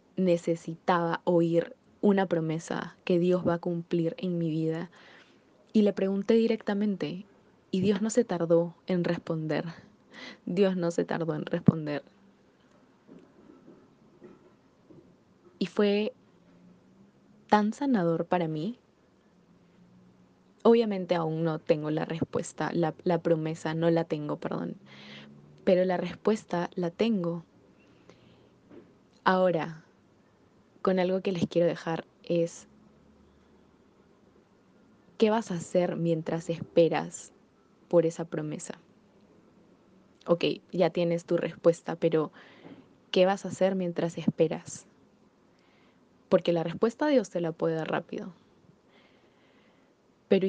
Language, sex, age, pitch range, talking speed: Spanish, female, 20-39, 165-195 Hz, 110 wpm